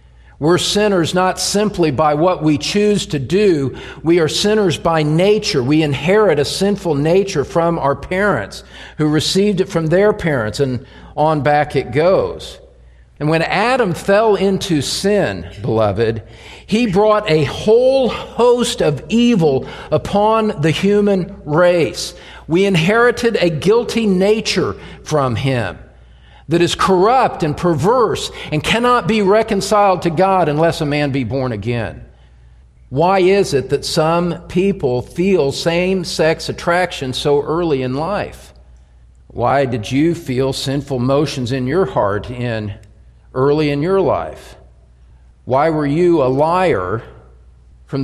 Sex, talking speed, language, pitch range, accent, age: male, 135 wpm, English, 130-190 Hz, American, 50-69